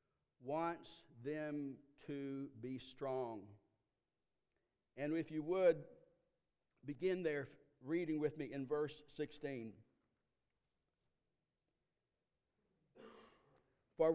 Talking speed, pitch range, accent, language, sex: 75 wpm, 150-180 Hz, American, English, male